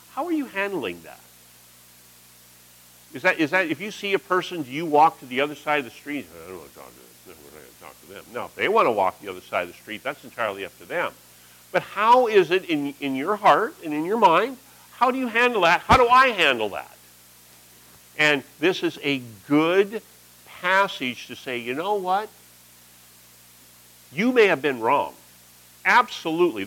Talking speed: 200 wpm